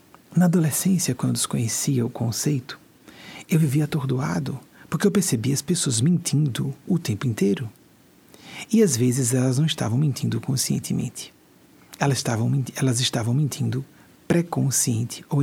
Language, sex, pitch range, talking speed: Portuguese, male, 125-165 Hz, 130 wpm